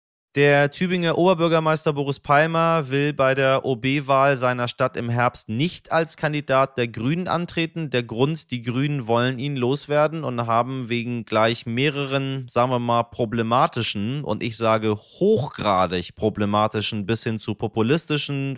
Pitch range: 105-135 Hz